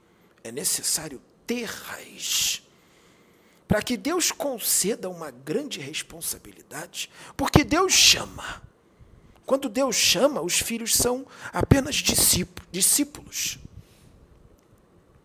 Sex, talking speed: male, 85 wpm